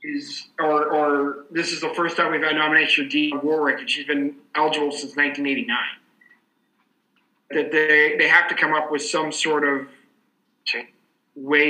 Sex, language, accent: male, English, American